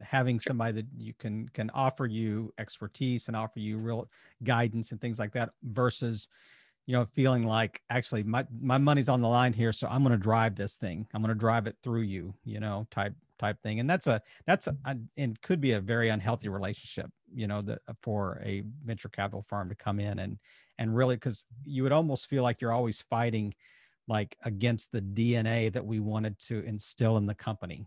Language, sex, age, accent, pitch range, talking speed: English, male, 50-69, American, 105-125 Hz, 210 wpm